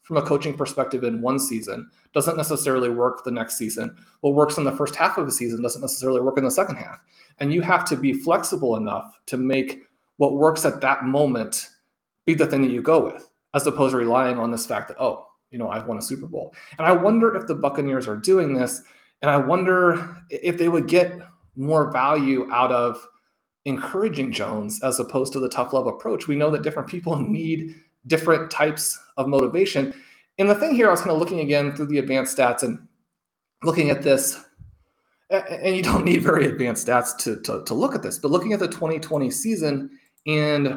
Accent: American